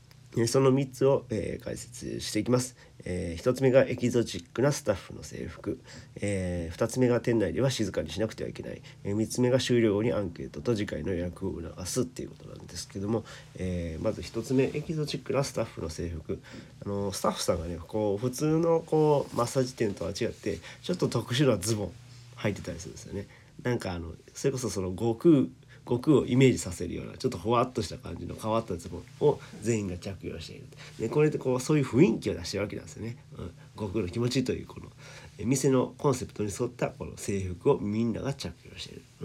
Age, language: 40-59, Japanese